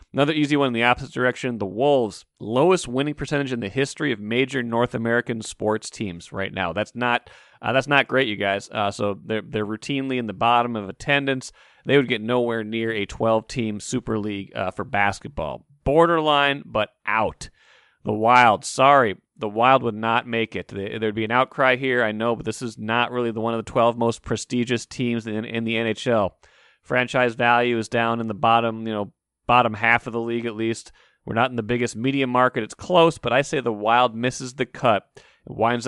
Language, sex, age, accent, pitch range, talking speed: English, male, 30-49, American, 110-130 Hz, 210 wpm